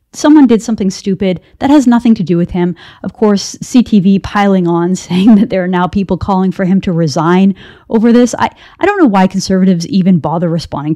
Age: 30-49